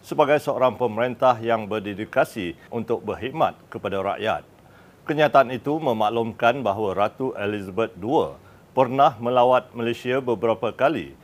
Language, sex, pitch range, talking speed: Malay, male, 110-125 Hz, 110 wpm